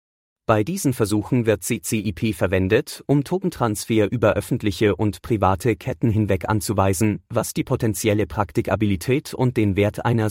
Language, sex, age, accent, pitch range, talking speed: English, male, 30-49, German, 100-120 Hz, 135 wpm